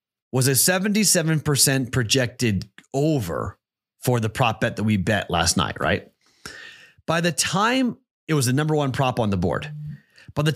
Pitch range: 110-150 Hz